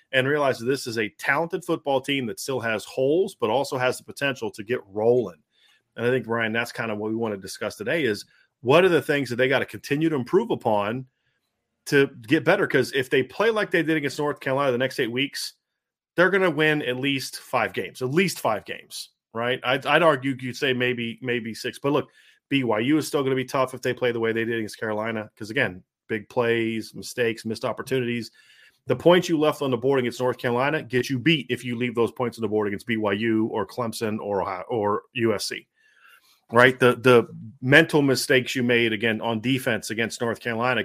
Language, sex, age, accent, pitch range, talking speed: English, male, 30-49, American, 115-135 Hz, 225 wpm